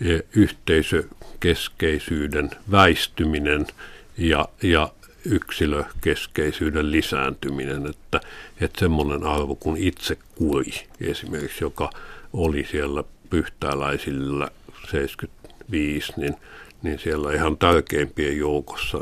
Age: 60-79